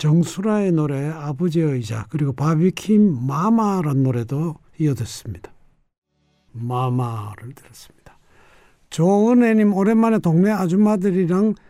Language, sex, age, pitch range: Korean, male, 60-79, 125-190 Hz